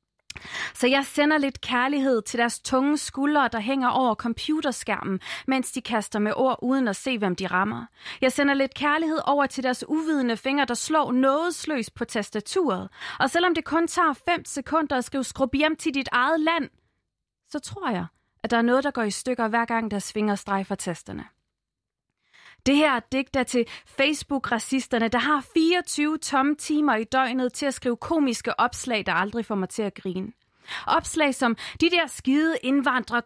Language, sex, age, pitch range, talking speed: Danish, female, 30-49, 215-285 Hz, 180 wpm